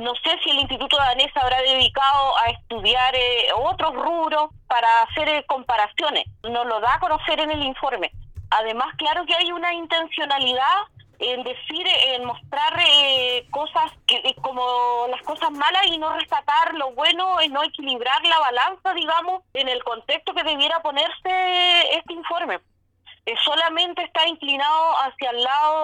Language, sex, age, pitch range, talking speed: Spanish, female, 30-49, 250-330 Hz, 160 wpm